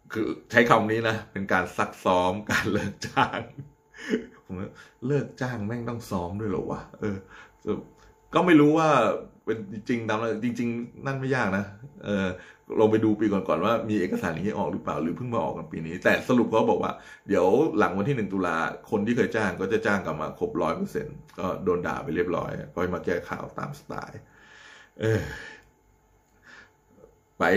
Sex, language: male, Thai